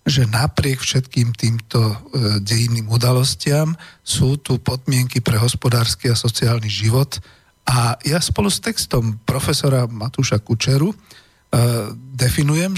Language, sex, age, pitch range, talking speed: Slovak, male, 40-59, 110-130 Hz, 110 wpm